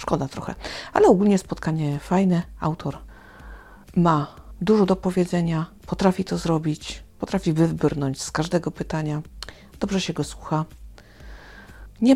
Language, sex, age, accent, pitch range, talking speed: Polish, female, 50-69, native, 150-190 Hz, 120 wpm